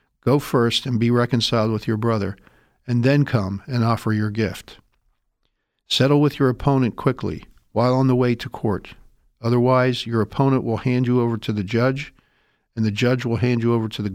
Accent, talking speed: American, 190 wpm